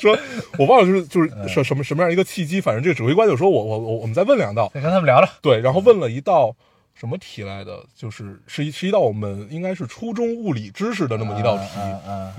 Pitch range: 110-145 Hz